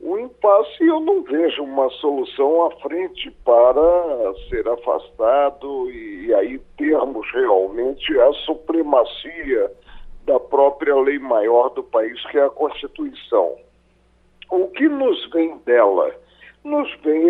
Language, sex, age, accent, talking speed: Portuguese, male, 50-69, Brazilian, 120 wpm